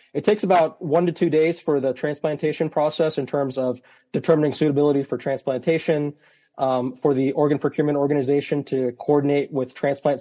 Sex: male